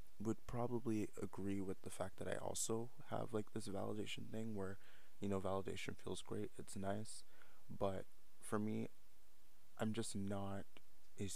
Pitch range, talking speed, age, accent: 90-105 Hz, 155 wpm, 20-39, American